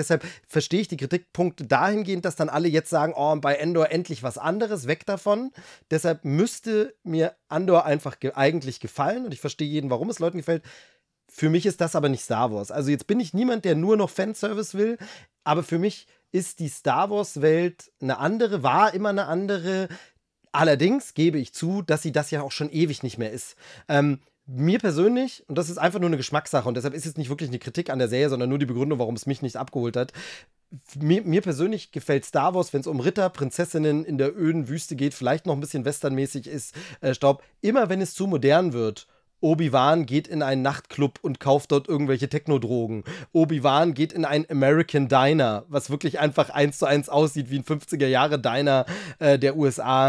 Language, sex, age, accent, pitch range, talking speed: German, male, 30-49, German, 140-175 Hz, 205 wpm